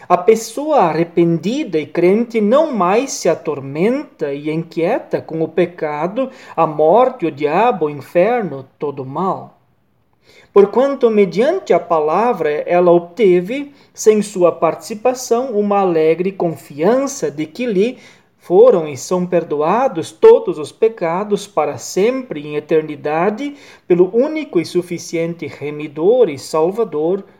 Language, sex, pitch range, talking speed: Portuguese, male, 160-225 Hz, 125 wpm